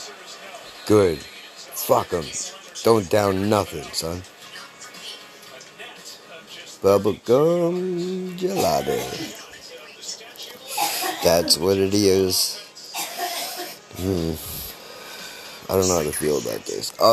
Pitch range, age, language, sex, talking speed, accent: 95-120 Hz, 50-69, English, male, 80 wpm, American